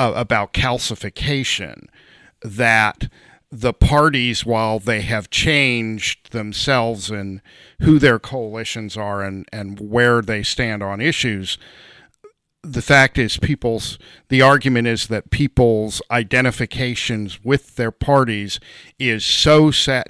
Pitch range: 105-125 Hz